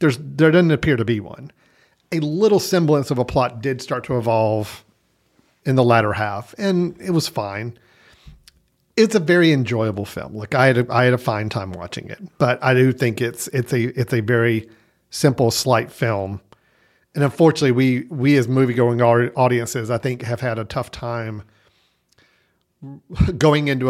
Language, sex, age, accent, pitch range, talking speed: English, male, 50-69, American, 115-140 Hz, 180 wpm